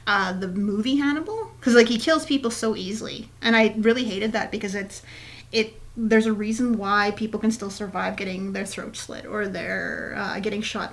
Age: 30-49